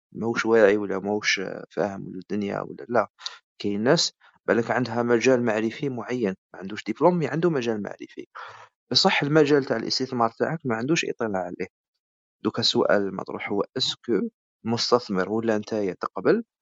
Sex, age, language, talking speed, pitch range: male, 40-59, Arabic, 145 wpm, 100-135 Hz